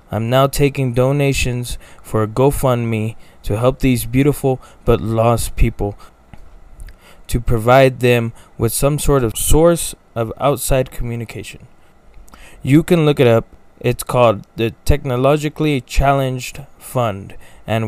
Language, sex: English, male